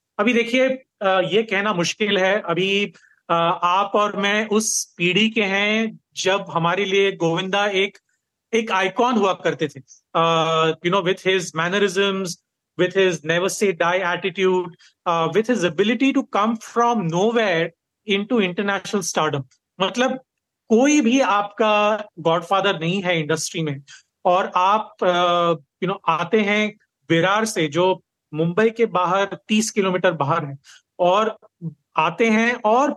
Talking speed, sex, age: 135 wpm, male, 30-49